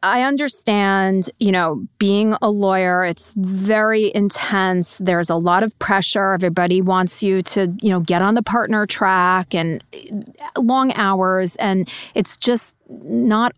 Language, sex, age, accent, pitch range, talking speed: English, female, 30-49, American, 175-210 Hz, 145 wpm